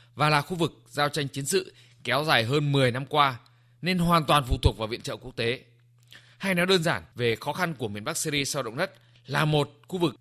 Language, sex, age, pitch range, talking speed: Vietnamese, male, 20-39, 120-170 Hz, 245 wpm